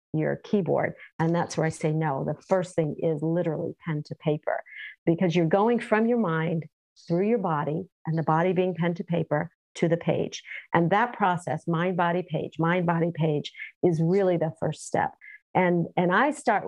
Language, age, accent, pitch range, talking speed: English, 50-69, American, 165-195 Hz, 185 wpm